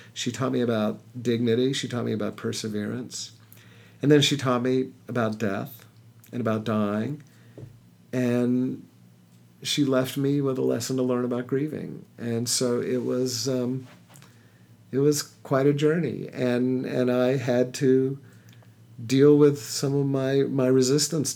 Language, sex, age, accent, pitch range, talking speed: English, male, 50-69, American, 110-135 Hz, 150 wpm